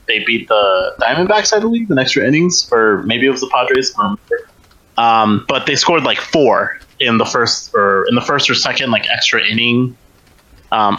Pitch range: 105-125 Hz